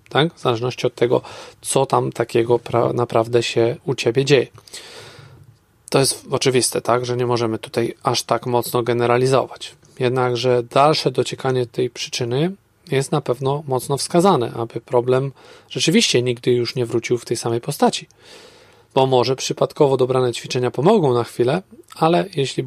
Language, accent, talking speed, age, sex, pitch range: Polish, native, 150 wpm, 40-59, male, 120-145 Hz